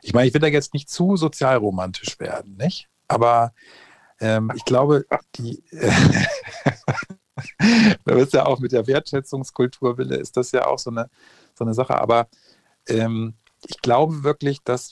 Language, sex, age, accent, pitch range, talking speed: German, male, 40-59, German, 115-150 Hz, 155 wpm